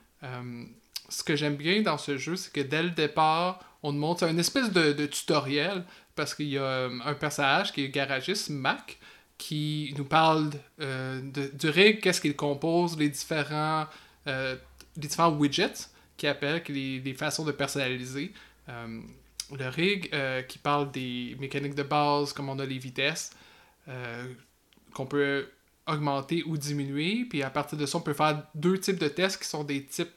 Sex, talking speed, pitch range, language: male, 185 wpm, 135-160 Hz, French